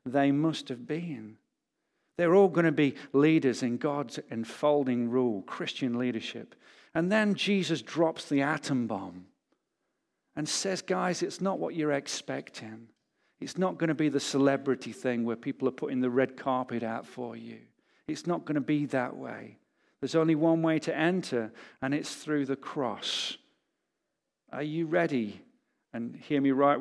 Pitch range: 130-180 Hz